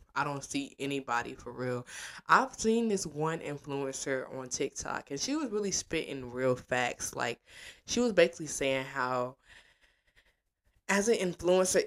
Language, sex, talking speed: English, female, 145 wpm